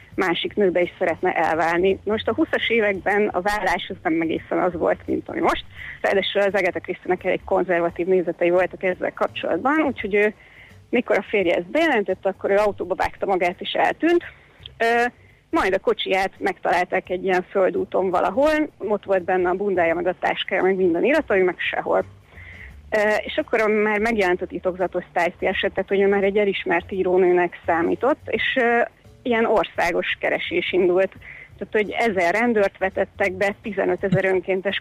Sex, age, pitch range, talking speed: female, 30-49, 185-225 Hz, 155 wpm